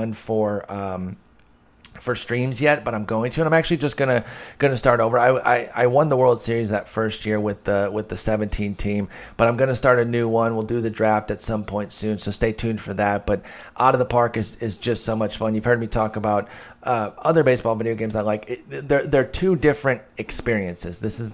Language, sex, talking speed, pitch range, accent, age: English, male, 235 wpm, 105-125 Hz, American, 30-49